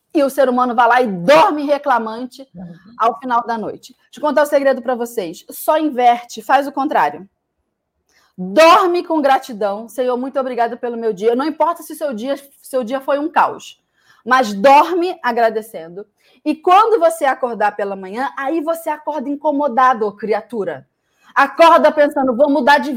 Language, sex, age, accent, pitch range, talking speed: Portuguese, female, 20-39, Brazilian, 250-320 Hz, 165 wpm